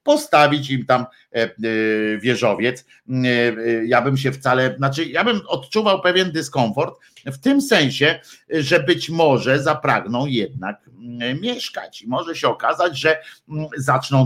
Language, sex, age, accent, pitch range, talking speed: Polish, male, 50-69, native, 115-145 Hz, 120 wpm